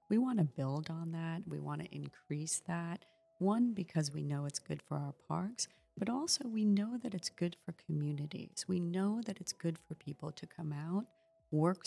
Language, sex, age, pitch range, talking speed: English, female, 40-59, 145-175 Hz, 200 wpm